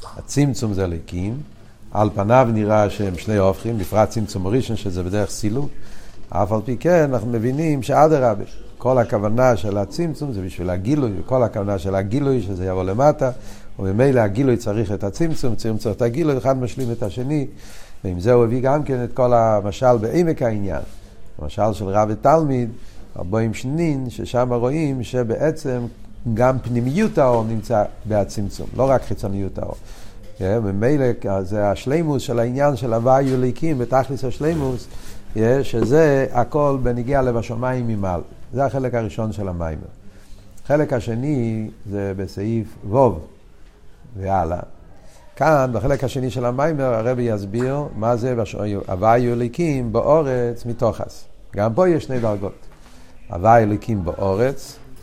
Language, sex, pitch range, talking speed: Hebrew, male, 100-130 Hz, 140 wpm